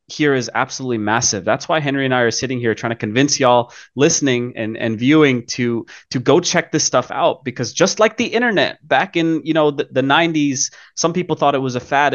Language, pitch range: English, 120-155 Hz